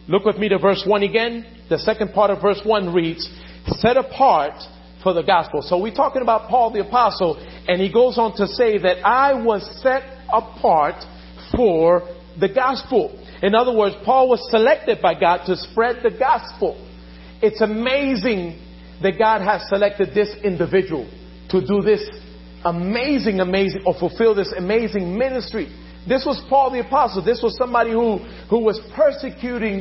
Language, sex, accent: English, male, American